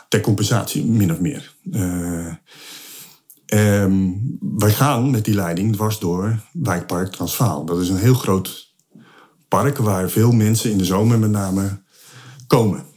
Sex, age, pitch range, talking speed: male, 50-69, 100-125 Hz, 145 wpm